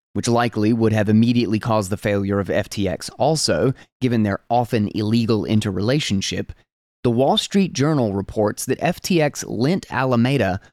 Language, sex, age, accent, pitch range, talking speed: English, male, 20-39, American, 115-165 Hz, 140 wpm